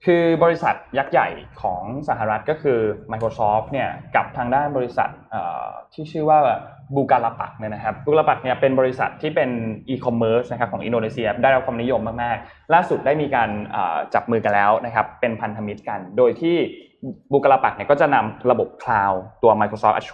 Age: 20-39